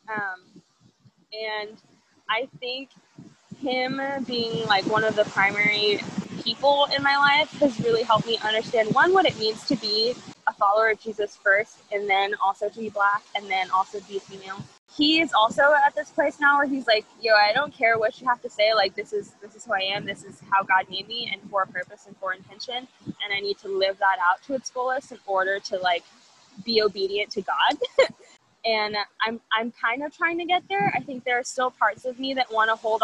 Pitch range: 195-255 Hz